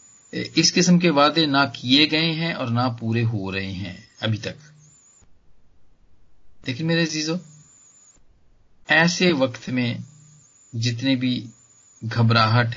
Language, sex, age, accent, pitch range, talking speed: Hindi, male, 40-59, native, 110-150 Hz, 120 wpm